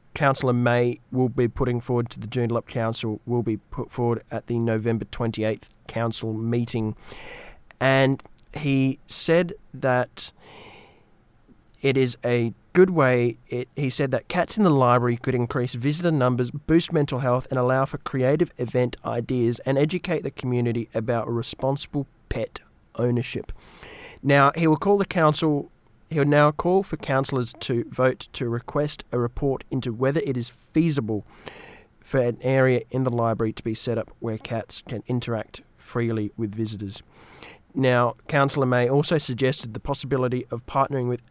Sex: male